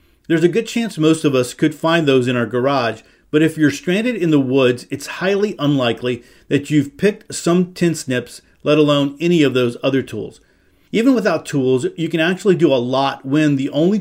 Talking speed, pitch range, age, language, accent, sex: 205 wpm, 130-160 Hz, 40-59, English, American, male